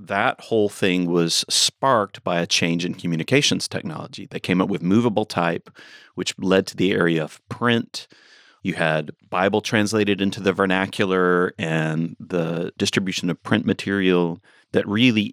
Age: 40-59